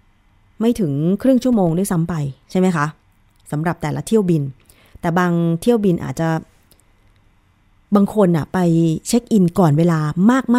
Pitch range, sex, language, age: 140-185 Hz, female, Thai, 20-39